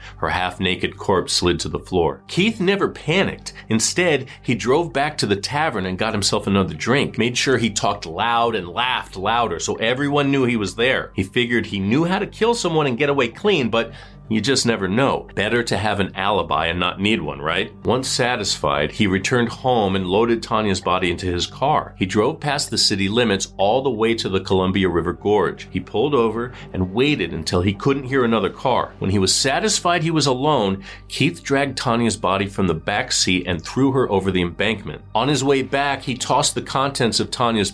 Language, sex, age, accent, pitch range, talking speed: English, male, 40-59, American, 95-125 Hz, 210 wpm